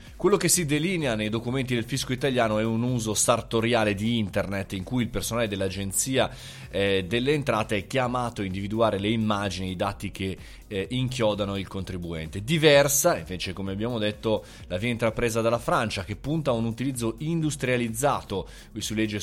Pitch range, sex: 100-130 Hz, male